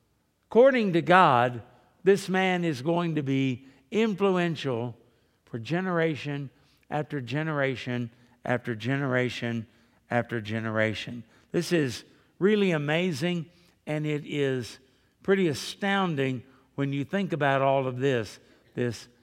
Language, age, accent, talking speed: English, 60-79, American, 110 wpm